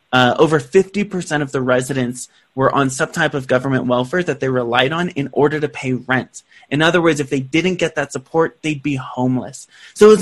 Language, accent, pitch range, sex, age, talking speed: English, American, 135-175 Hz, male, 20-39, 215 wpm